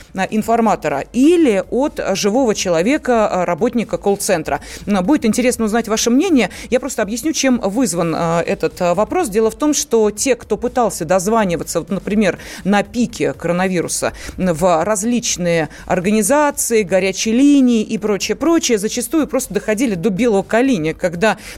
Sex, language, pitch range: female, Russian, 195-260 Hz